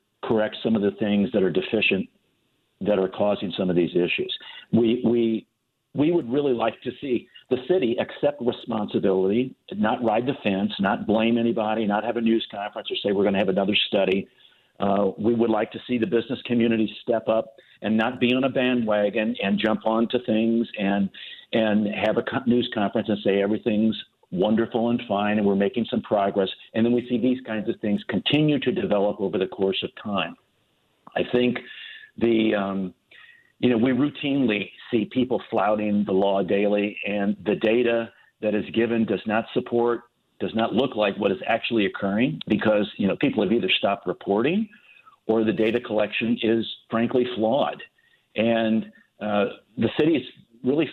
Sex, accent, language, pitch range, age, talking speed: male, American, English, 105-120 Hz, 50-69, 180 wpm